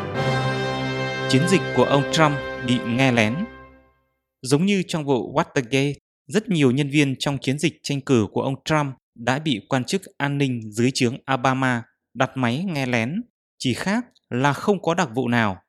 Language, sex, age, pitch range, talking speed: English, male, 20-39, 120-155 Hz, 175 wpm